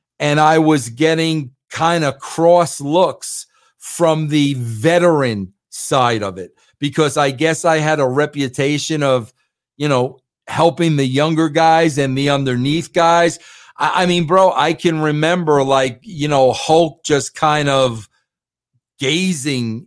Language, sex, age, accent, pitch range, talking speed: English, male, 50-69, American, 135-170 Hz, 140 wpm